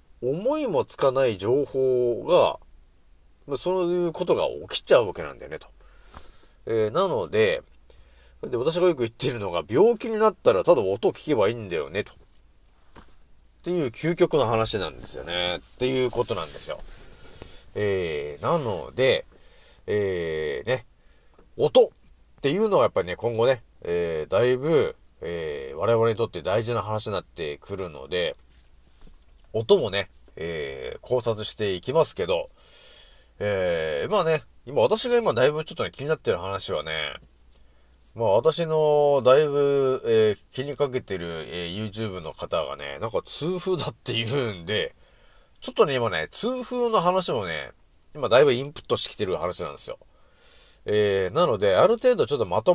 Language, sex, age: Japanese, male, 40-59